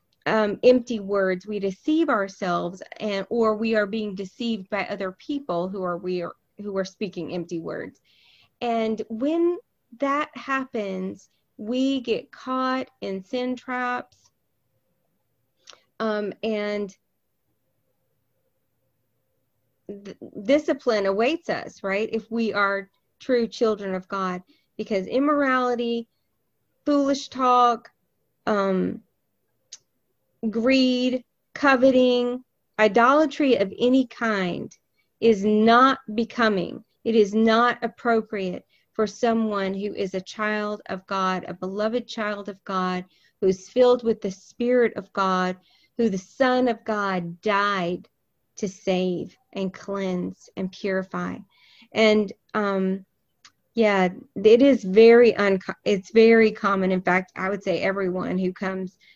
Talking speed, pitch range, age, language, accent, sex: 120 wpm, 190-240 Hz, 30-49, English, American, female